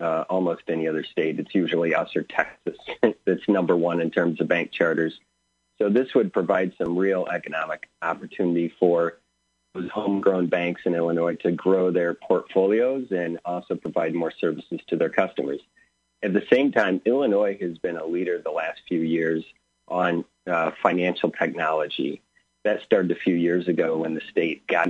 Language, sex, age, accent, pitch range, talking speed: English, male, 40-59, American, 85-95 Hz, 170 wpm